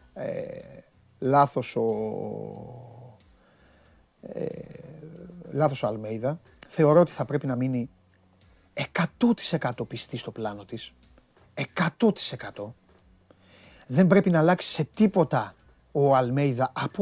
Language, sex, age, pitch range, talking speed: Greek, male, 30-49, 120-180 Hz, 100 wpm